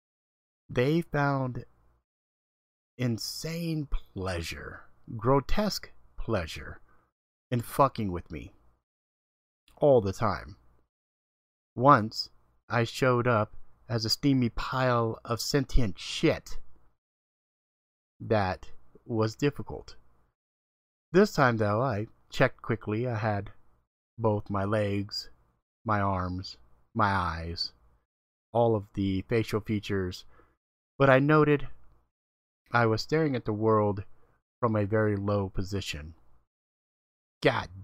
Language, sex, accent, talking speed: English, male, American, 100 wpm